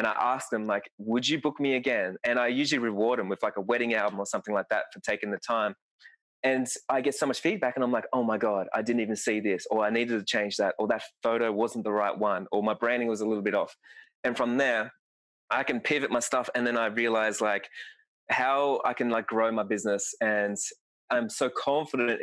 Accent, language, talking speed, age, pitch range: Australian, English, 245 wpm, 20-39, 110-150 Hz